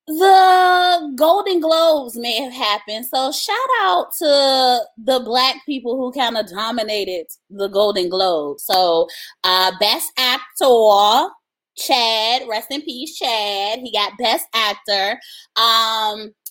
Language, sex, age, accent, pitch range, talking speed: English, female, 20-39, American, 215-285 Hz, 125 wpm